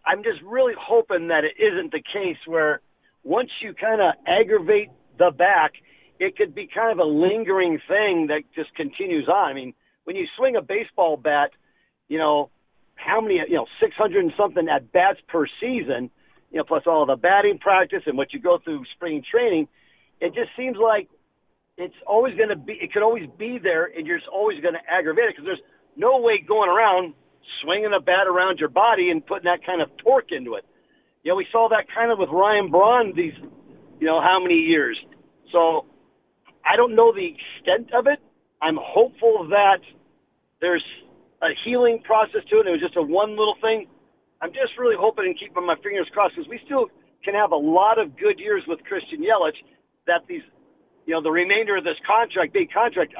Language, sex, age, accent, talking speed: English, male, 50-69, American, 200 wpm